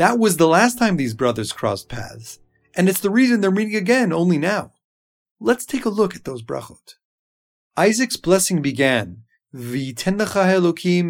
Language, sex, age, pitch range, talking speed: English, male, 30-49, 145-195 Hz, 160 wpm